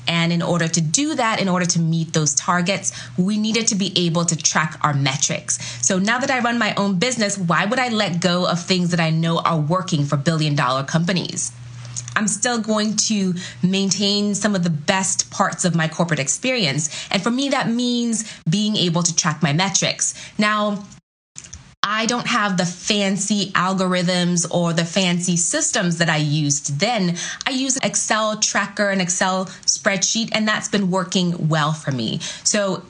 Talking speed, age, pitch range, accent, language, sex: 180 wpm, 20-39, 165-210 Hz, American, English, female